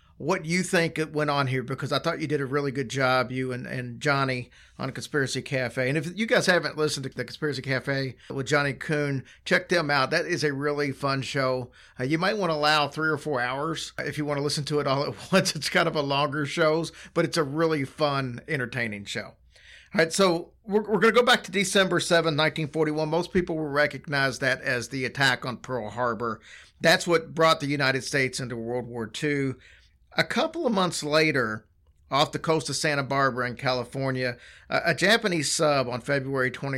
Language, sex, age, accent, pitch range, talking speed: English, male, 50-69, American, 130-160 Hz, 215 wpm